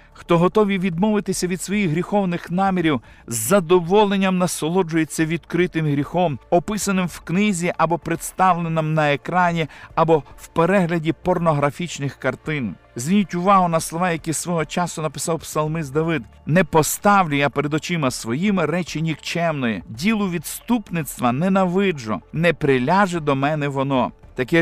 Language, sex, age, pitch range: Ukrainian, male, 50-69, 145-180 Hz